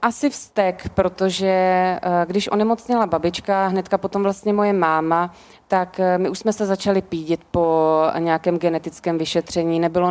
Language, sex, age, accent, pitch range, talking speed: Czech, female, 20-39, native, 160-180 Hz, 135 wpm